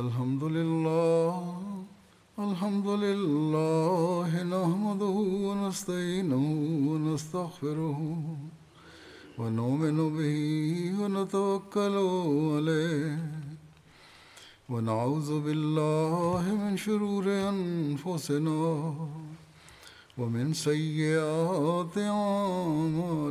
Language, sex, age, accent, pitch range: Malayalam, male, 60-79, native, 155-195 Hz